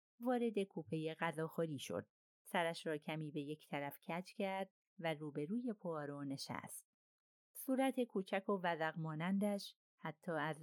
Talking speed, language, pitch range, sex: 130 wpm, Persian, 150-200 Hz, female